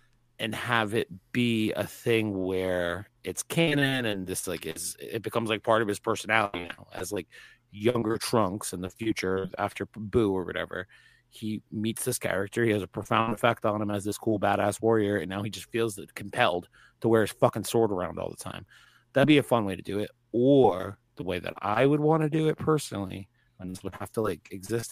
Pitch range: 95-120 Hz